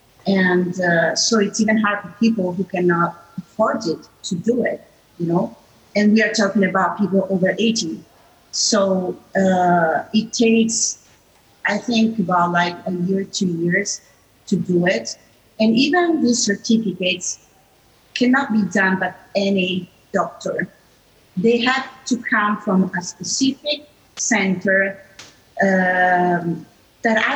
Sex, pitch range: female, 180-220 Hz